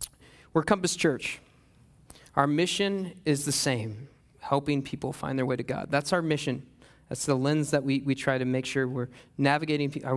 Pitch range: 130-155 Hz